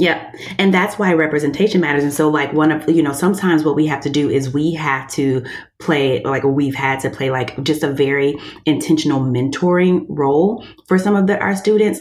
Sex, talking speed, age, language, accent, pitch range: female, 210 wpm, 30-49, English, American, 140-175 Hz